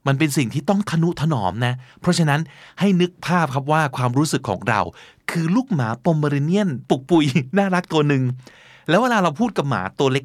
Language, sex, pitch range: Thai, male, 125-175 Hz